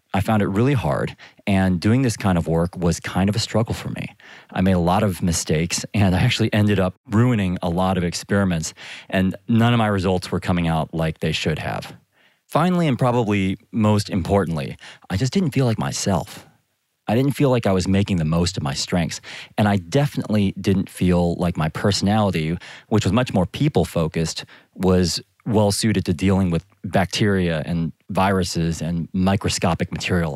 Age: 30-49